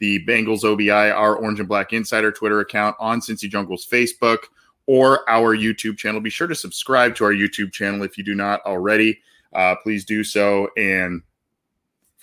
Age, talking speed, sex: 20-39, 180 wpm, male